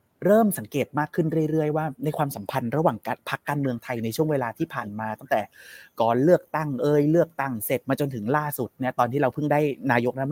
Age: 30-49